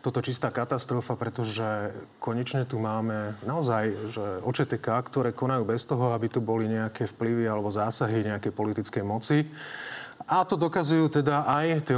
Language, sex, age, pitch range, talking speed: Slovak, male, 30-49, 115-130 Hz, 150 wpm